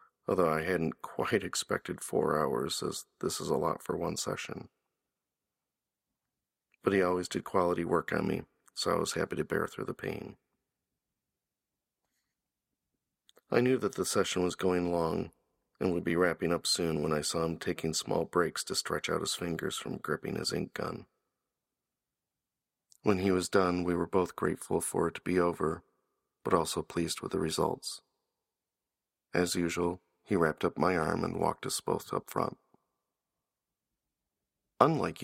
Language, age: English, 40-59